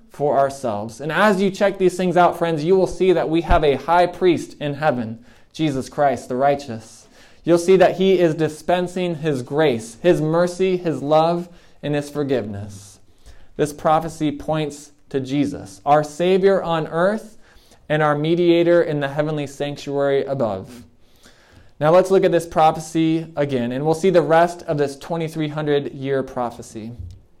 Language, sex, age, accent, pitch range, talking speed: English, male, 20-39, American, 135-170 Hz, 160 wpm